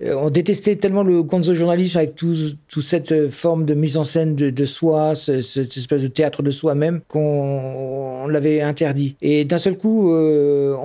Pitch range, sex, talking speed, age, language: 150-190 Hz, male, 190 wpm, 50-69, French